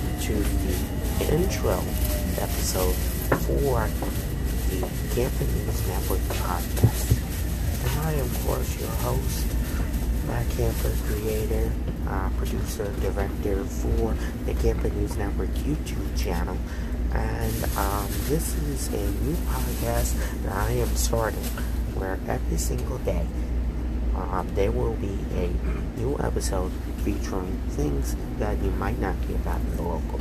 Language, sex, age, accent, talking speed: English, male, 30-49, American, 125 wpm